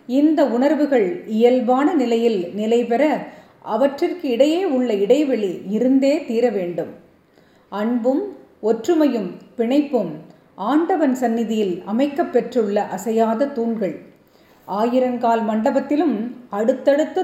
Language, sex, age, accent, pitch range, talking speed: Tamil, female, 30-49, native, 220-280 Hz, 85 wpm